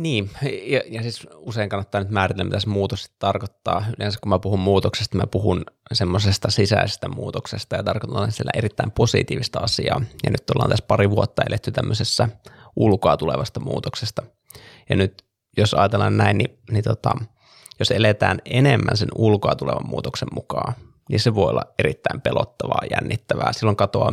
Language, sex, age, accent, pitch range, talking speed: Finnish, male, 20-39, native, 100-115 Hz, 155 wpm